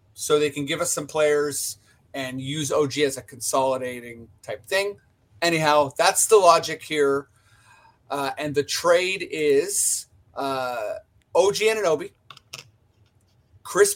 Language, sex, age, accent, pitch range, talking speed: English, male, 30-49, American, 120-155 Hz, 130 wpm